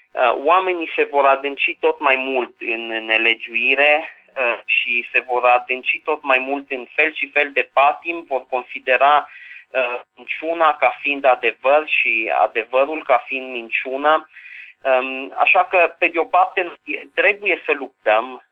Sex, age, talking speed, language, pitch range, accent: male, 30-49, 135 wpm, Romanian, 125-160 Hz, native